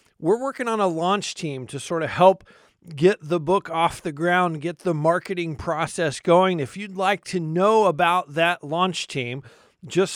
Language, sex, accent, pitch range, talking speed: English, male, American, 160-190 Hz, 185 wpm